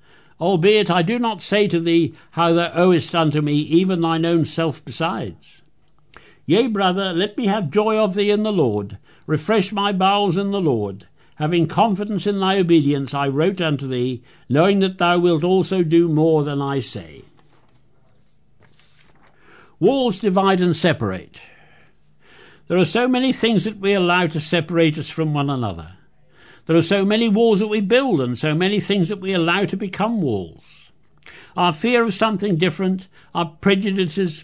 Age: 60-79